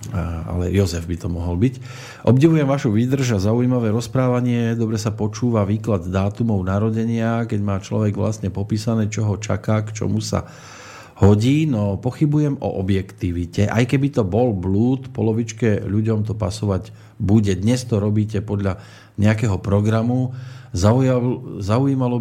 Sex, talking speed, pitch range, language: male, 135 wpm, 100-120 Hz, Slovak